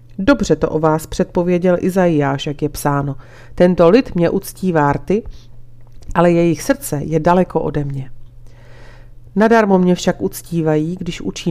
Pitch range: 145-195 Hz